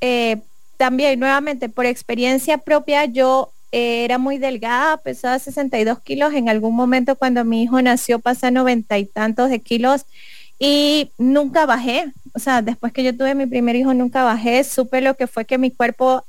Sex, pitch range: female, 240-285 Hz